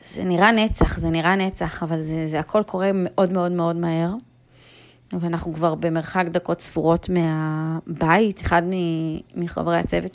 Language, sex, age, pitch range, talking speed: Hebrew, female, 20-39, 165-185 Hz, 140 wpm